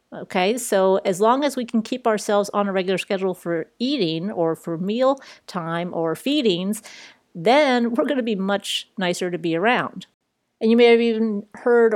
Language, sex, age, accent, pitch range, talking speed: English, female, 40-59, American, 185-220 Hz, 185 wpm